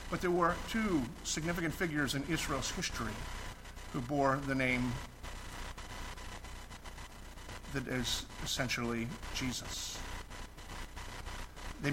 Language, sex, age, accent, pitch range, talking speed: English, male, 50-69, American, 100-140 Hz, 90 wpm